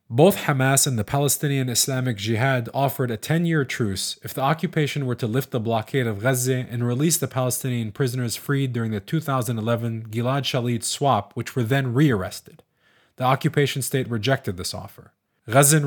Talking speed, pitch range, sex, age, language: 165 wpm, 115-140 Hz, male, 20-39, English